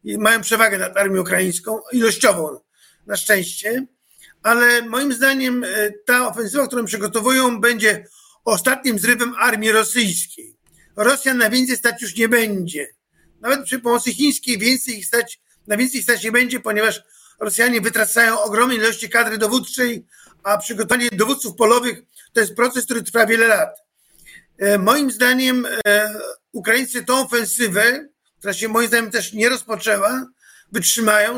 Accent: native